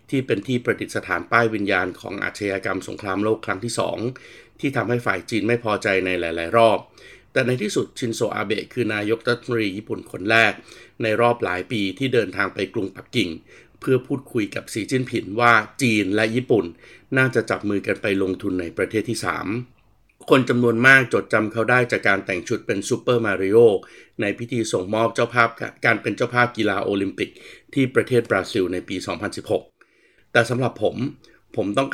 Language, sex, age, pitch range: Thai, male, 60-79, 100-125 Hz